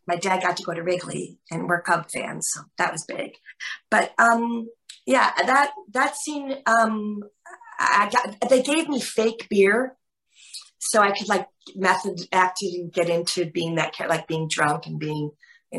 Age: 40-59